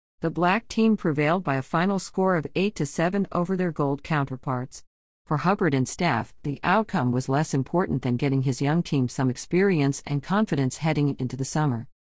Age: 50-69